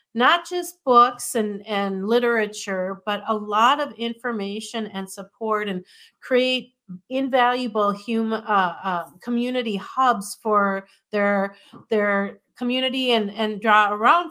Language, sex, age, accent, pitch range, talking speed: English, female, 50-69, American, 195-230 Hz, 120 wpm